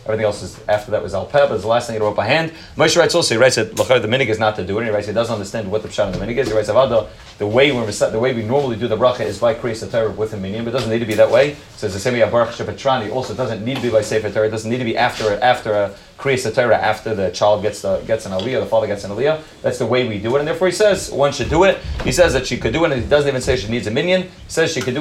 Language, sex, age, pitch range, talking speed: English, male, 30-49, 110-140 Hz, 335 wpm